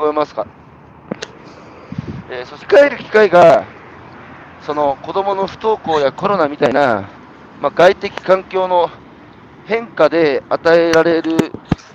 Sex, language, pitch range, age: male, Japanese, 120-175 Hz, 40-59